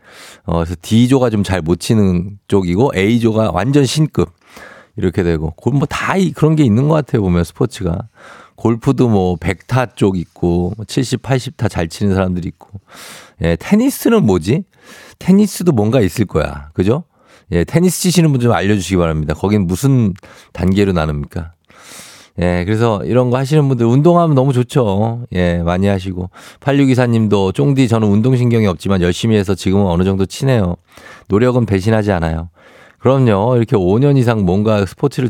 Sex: male